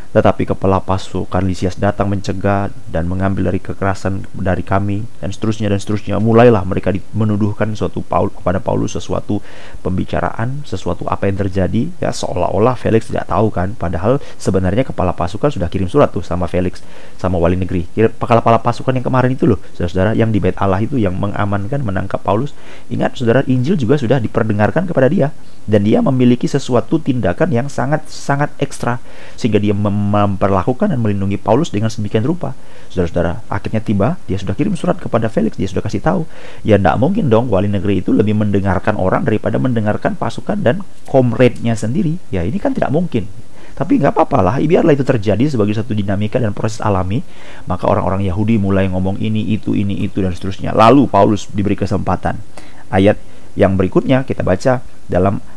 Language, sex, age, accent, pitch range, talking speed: Indonesian, male, 30-49, native, 95-120 Hz, 170 wpm